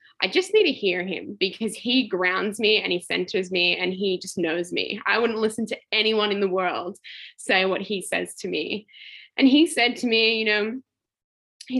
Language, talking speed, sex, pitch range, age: English, 210 wpm, female, 195-270 Hz, 10-29